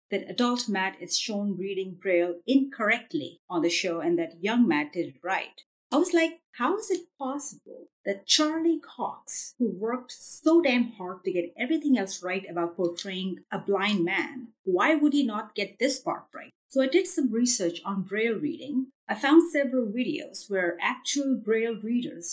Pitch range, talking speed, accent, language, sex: 200-285 Hz, 180 wpm, Indian, English, female